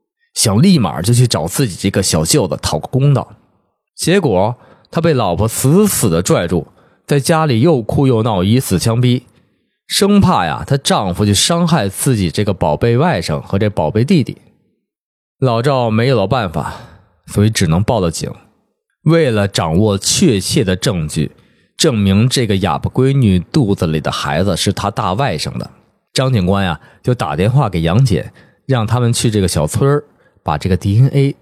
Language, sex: Chinese, male